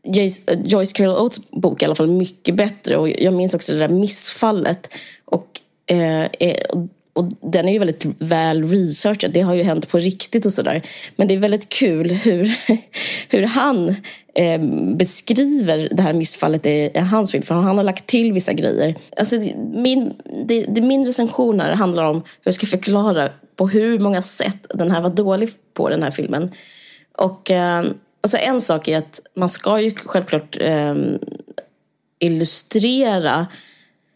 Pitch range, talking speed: 165-215 Hz, 155 wpm